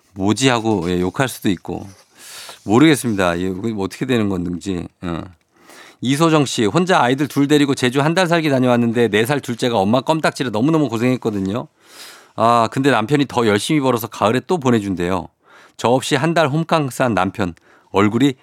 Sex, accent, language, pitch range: male, native, Korean, 105-150 Hz